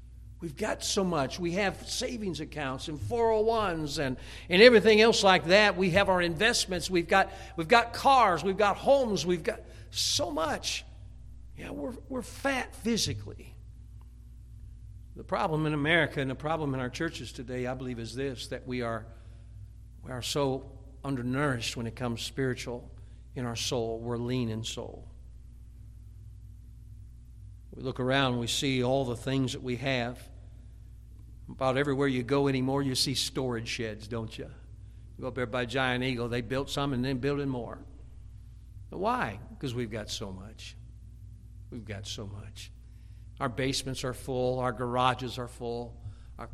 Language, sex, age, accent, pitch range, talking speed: English, male, 60-79, American, 110-140 Hz, 165 wpm